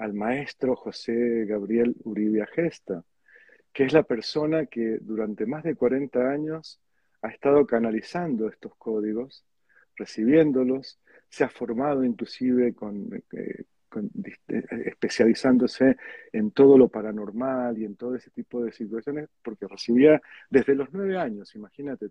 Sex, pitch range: male, 115-155 Hz